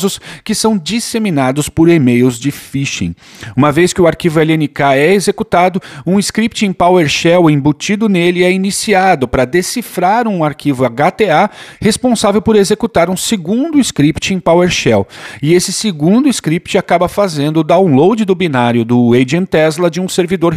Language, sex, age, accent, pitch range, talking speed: Portuguese, male, 40-59, Brazilian, 145-200 Hz, 150 wpm